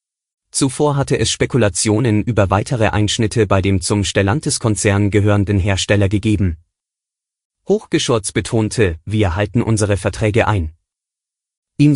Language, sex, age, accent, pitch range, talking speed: German, male, 30-49, German, 100-120 Hz, 110 wpm